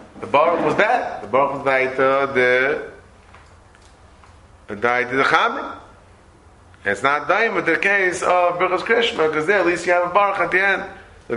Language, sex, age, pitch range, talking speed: English, male, 30-49, 130-165 Hz, 115 wpm